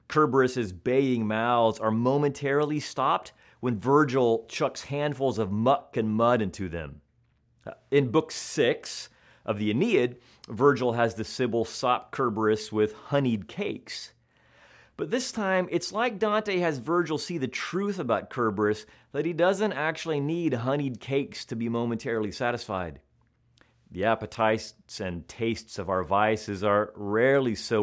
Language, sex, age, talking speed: English, male, 30-49, 140 wpm